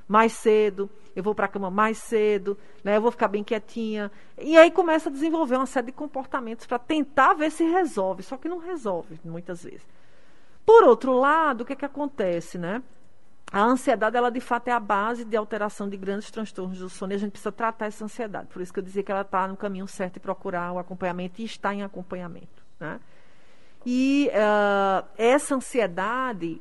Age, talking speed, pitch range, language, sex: 40-59, 200 wpm, 195-265 Hz, Portuguese, female